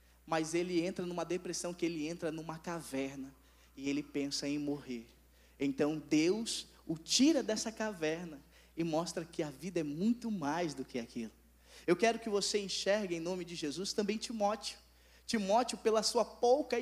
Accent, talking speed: Brazilian, 170 wpm